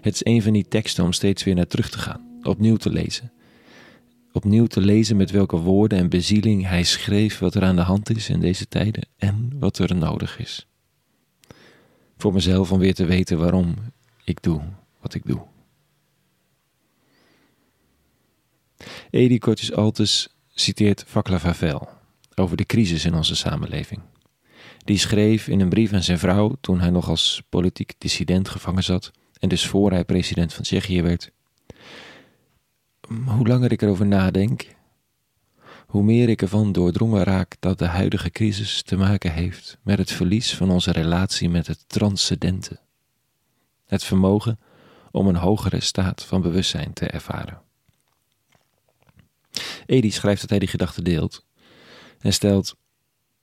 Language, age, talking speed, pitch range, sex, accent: Dutch, 40-59, 150 wpm, 90-110 Hz, male, Dutch